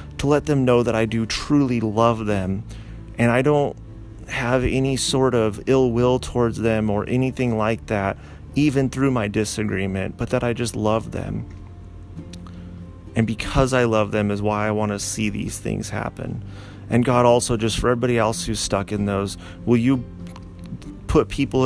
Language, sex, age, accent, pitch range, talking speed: English, male, 30-49, American, 100-120 Hz, 175 wpm